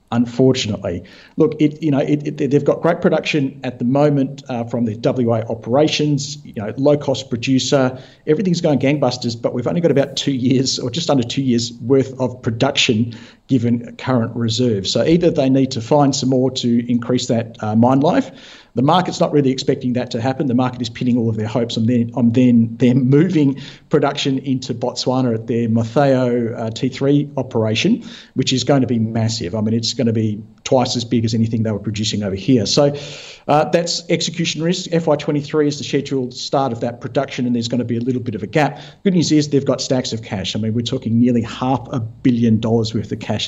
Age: 50-69